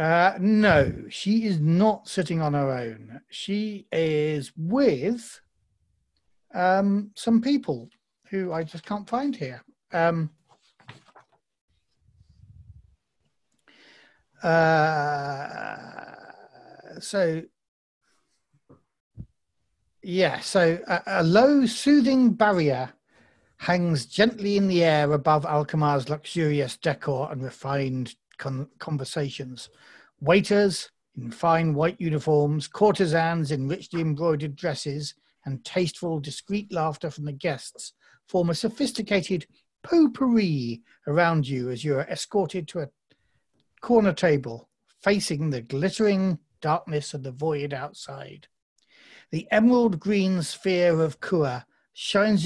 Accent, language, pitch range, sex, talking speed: British, English, 145-195 Hz, male, 100 wpm